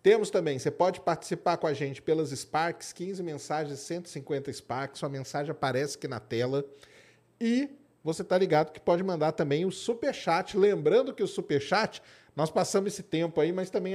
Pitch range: 145-185 Hz